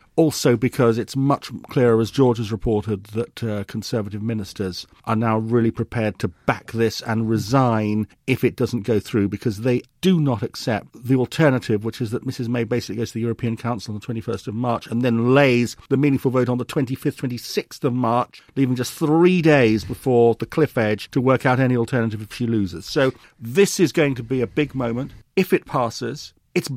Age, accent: 50-69, British